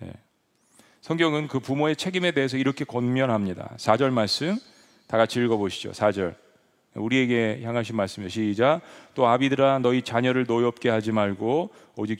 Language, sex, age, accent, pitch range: Korean, male, 40-59, native, 115-150 Hz